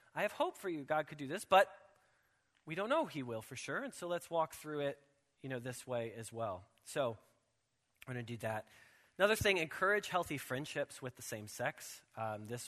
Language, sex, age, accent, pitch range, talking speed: English, male, 20-39, American, 115-160 Hz, 220 wpm